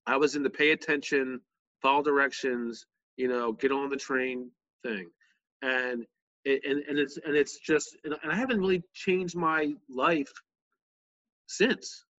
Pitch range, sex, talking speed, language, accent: 120-140 Hz, male, 150 wpm, English, American